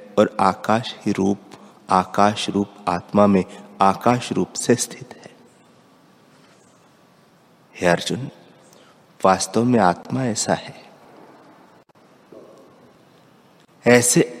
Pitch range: 100-120 Hz